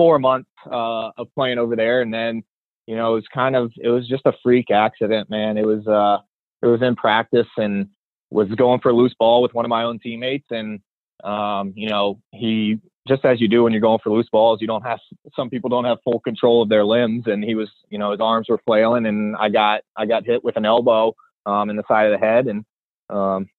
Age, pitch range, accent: 20-39, 105-115 Hz, American